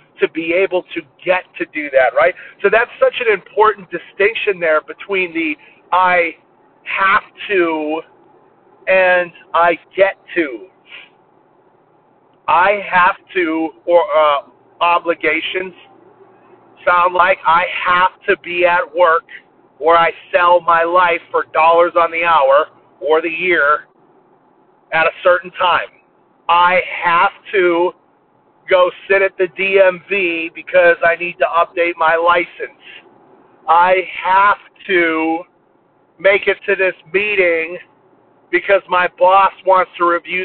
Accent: American